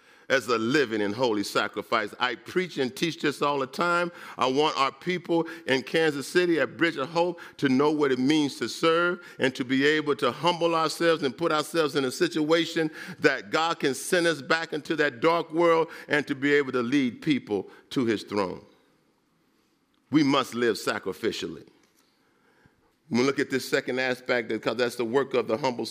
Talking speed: 190 wpm